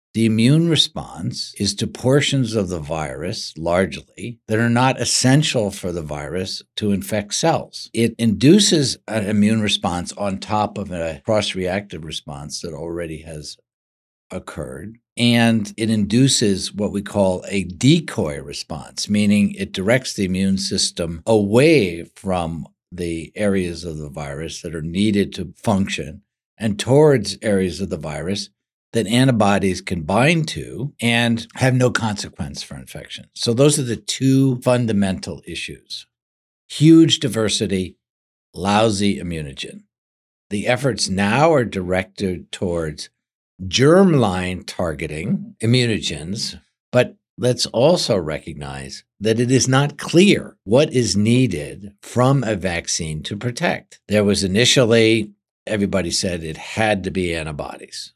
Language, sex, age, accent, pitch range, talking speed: English, male, 60-79, American, 90-120 Hz, 130 wpm